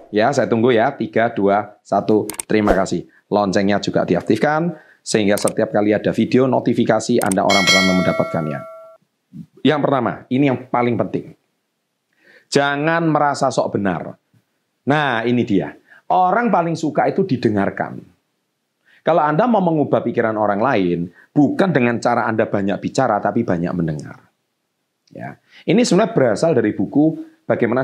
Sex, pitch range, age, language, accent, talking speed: male, 100-155 Hz, 30-49, Indonesian, native, 135 wpm